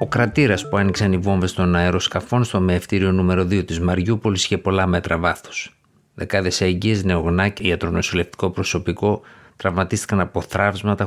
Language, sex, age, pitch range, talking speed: Greek, male, 50-69, 90-100 Hz, 145 wpm